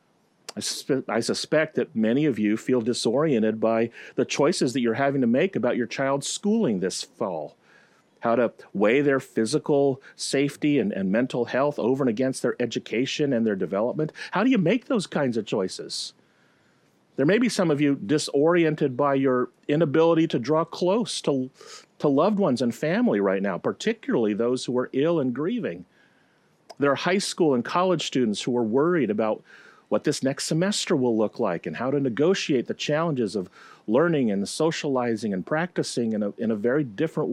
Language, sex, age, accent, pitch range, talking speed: English, male, 40-59, American, 125-160 Hz, 180 wpm